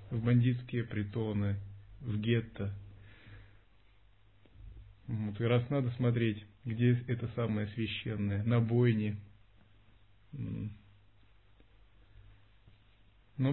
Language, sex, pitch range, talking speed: Russian, male, 100-120 Hz, 70 wpm